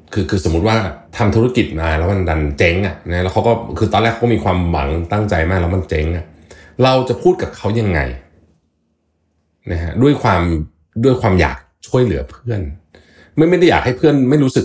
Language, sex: Thai, male